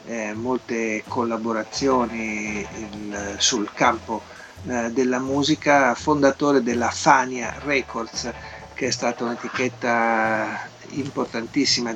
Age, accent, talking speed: 50-69, native, 85 wpm